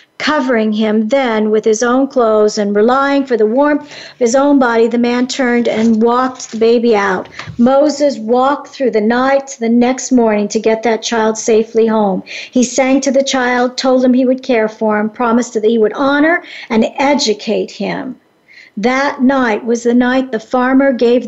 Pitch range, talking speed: 225-270 Hz, 190 wpm